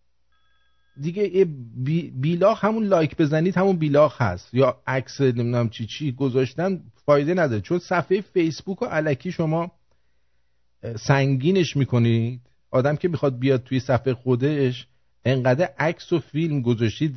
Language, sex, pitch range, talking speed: English, male, 90-145 Hz, 130 wpm